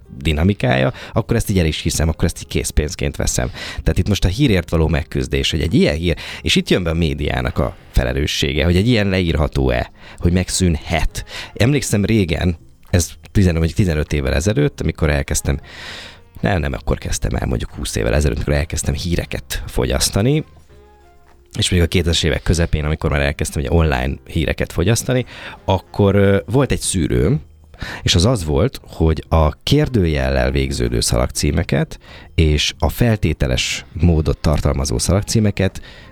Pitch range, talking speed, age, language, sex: 75-95 Hz, 150 wpm, 20-39, Hungarian, male